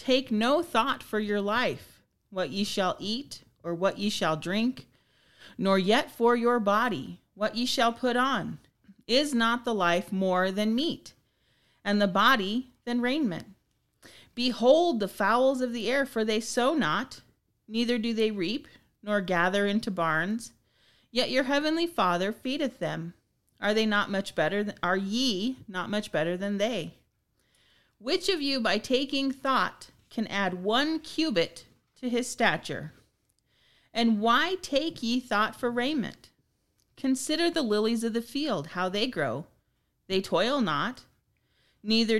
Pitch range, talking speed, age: 195-255 Hz, 150 wpm, 40-59